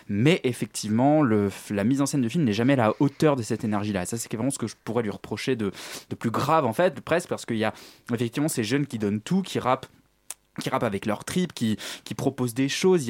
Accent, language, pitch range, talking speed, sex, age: French, French, 125-165 Hz, 265 wpm, male, 20-39